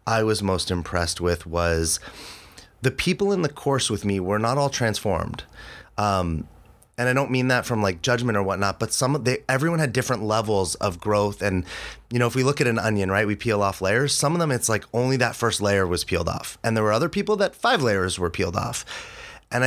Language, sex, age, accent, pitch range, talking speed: English, male, 30-49, American, 95-125 Hz, 230 wpm